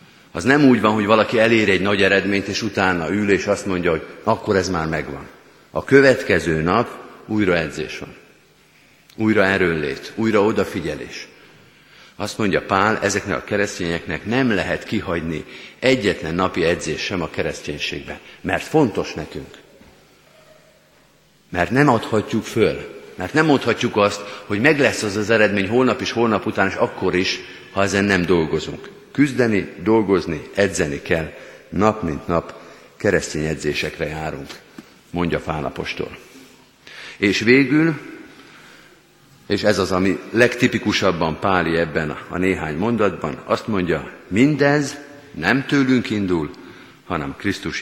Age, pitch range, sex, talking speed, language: 50-69, 90-115 Hz, male, 135 wpm, Hungarian